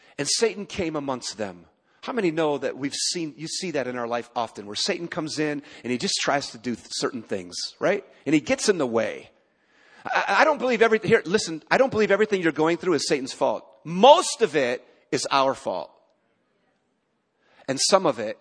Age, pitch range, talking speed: 40-59, 135-220 Hz, 210 wpm